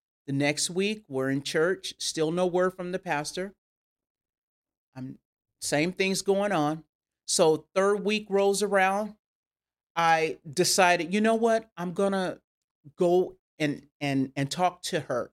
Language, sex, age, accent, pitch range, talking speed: English, male, 40-59, American, 150-205 Hz, 140 wpm